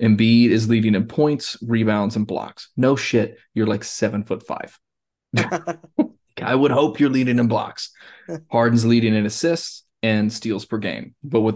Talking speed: 165 wpm